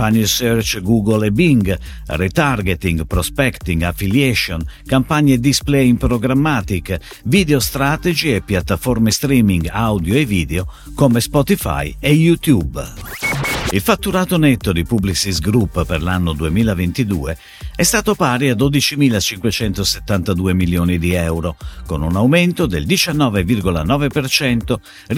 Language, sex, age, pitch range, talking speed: Italian, male, 50-69, 90-140 Hz, 110 wpm